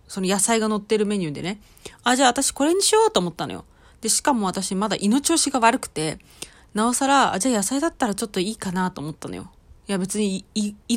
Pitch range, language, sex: 170-255 Hz, Japanese, female